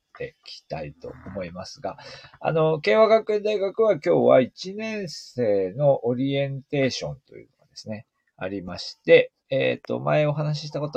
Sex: male